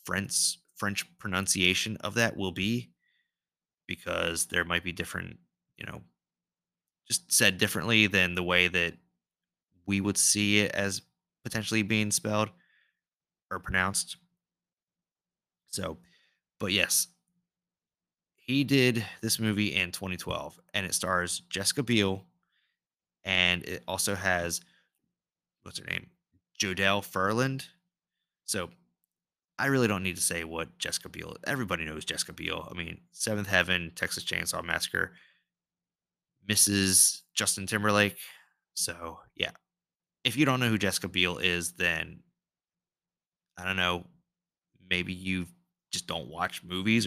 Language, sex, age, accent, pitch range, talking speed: English, male, 20-39, American, 90-120 Hz, 125 wpm